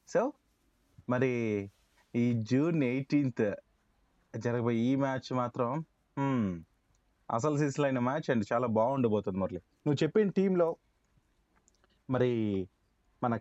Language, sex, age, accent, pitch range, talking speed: Telugu, male, 20-39, native, 115-145 Hz, 100 wpm